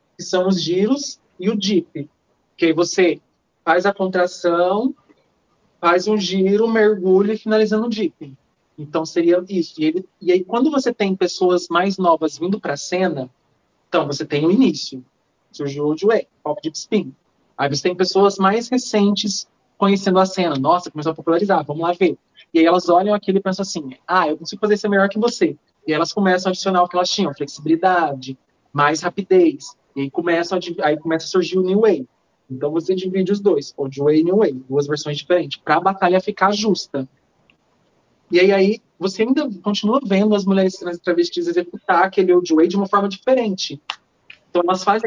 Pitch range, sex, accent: 165-205 Hz, male, Brazilian